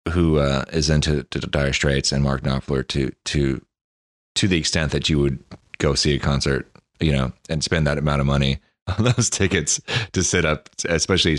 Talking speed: 190 wpm